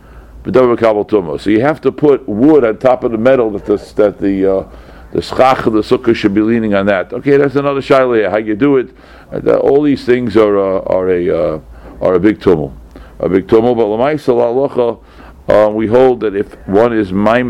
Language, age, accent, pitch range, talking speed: English, 60-79, American, 95-120 Hz, 175 wpm